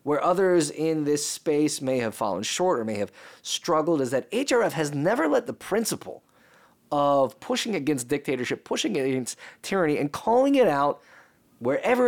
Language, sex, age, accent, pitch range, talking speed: English, male, 20-39, American, 135-180 Hz, 165 wpm